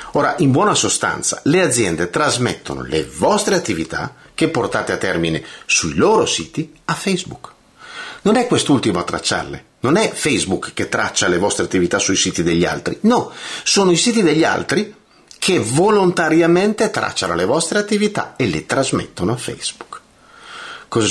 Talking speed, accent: 155 wpm, native